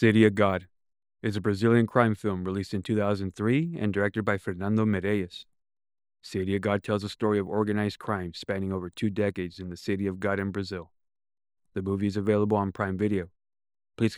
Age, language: 30-49, English